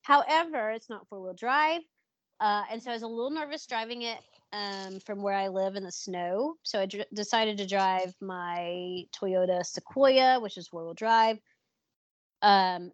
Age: 30-49